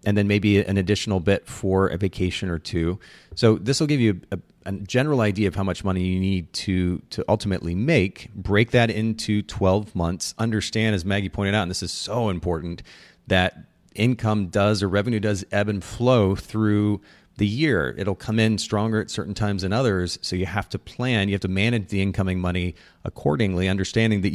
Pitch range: 90-110 Hz